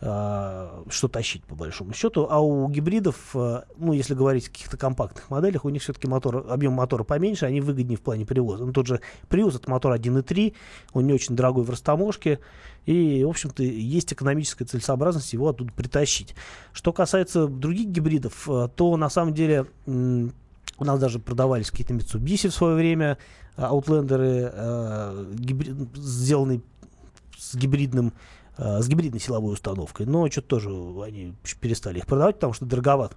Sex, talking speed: male, 150 wpm